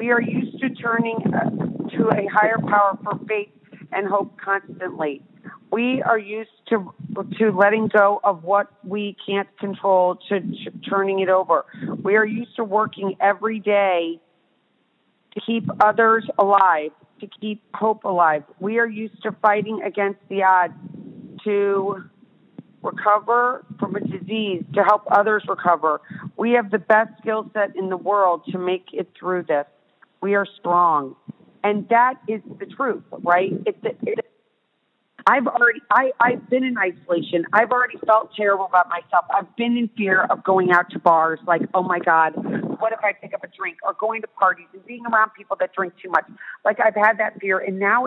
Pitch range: 190-220 Hz